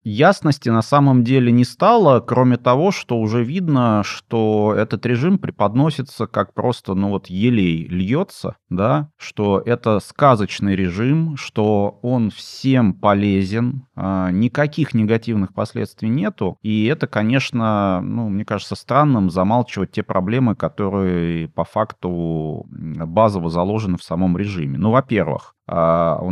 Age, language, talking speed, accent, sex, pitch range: 30-49, Russian, 125 wpm, native, male, 95-120 Hz